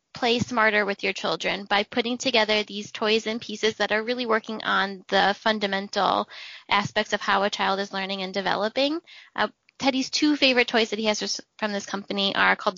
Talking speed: 195 wpm